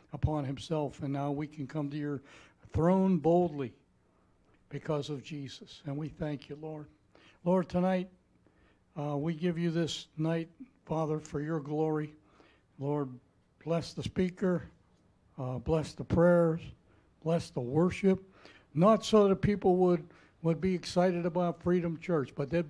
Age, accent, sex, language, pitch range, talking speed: 60-79, American, male, English, 135-165 Hz, 145 wpm